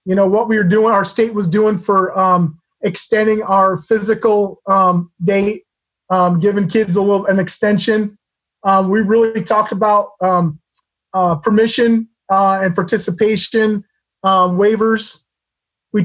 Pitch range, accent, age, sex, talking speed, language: 185-215 Hz, American, 30-49, male, 140 wpm, English